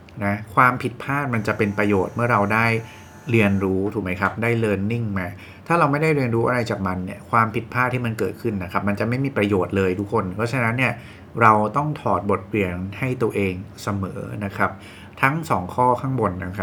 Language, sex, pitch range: English, male, 95-115 Hz